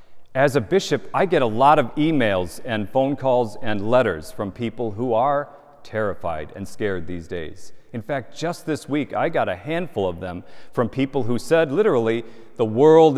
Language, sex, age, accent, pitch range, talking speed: English, male, 40-59, American, 95-125 Hz, 185 wpm